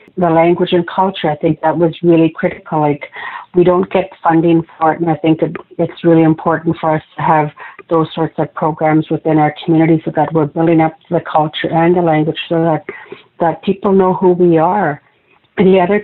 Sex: female